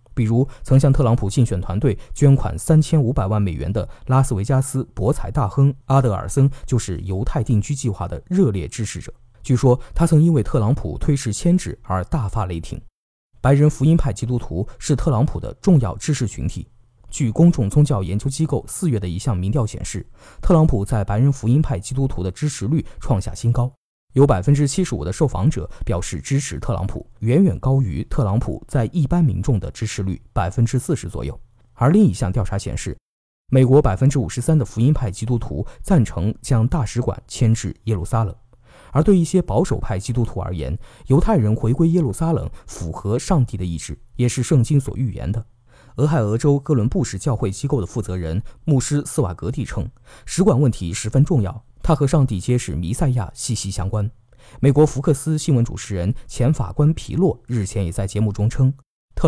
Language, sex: Chinese, male